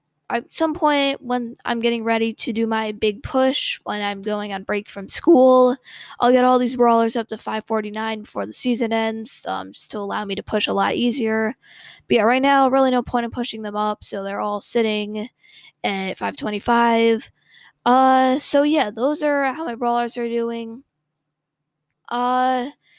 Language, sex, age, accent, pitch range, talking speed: English, female, 10-29, American, 220-255 Hz, 180 wpm